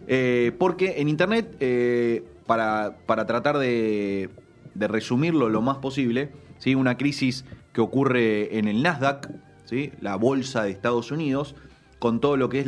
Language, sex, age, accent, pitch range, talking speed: Spanish, male, 30-49, Argentinian, 115-155 Hz, 145 wpm